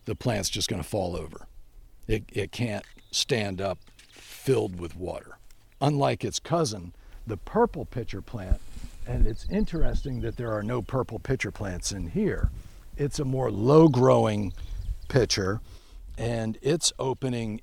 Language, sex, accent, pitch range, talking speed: English, male, American, 100-125 Hz, 140 wpm